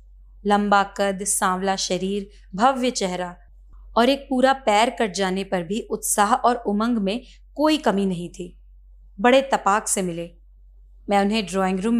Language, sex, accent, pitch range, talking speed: Hindi, female, native, 180-235 Hz, 150 wpm